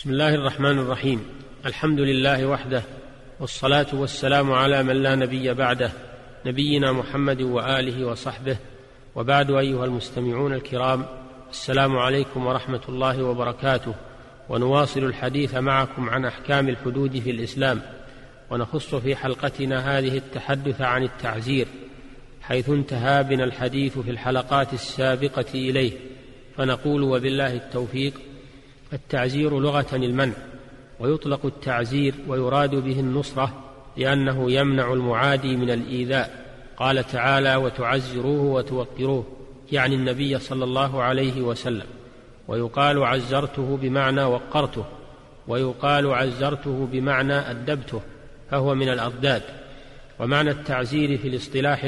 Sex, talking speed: male, 105 wpm